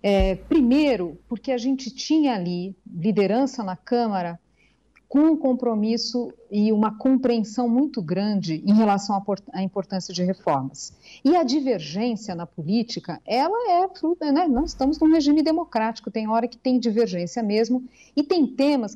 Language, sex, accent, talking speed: Portuguese, female, Brazilian, 150 wpm